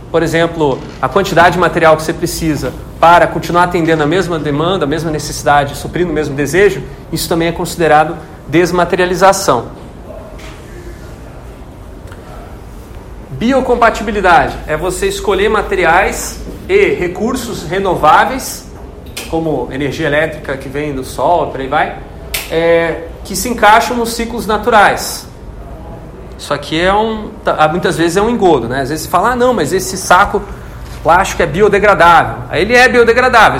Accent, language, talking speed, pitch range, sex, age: Brazilian, Portuguese, 140 wpm, 160-215 Hz, male, 40-59